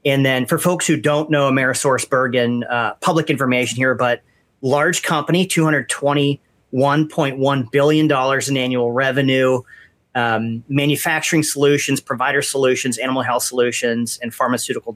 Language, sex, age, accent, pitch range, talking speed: English, male, 30-49, American, 120-145 Hz, 120 wpm